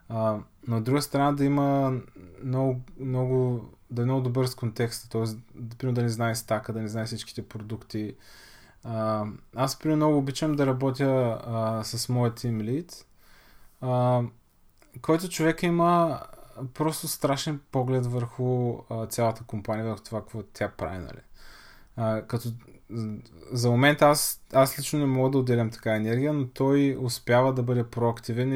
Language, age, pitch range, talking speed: Bulgarian, 20-39, 115-135 Hz, 150 wpm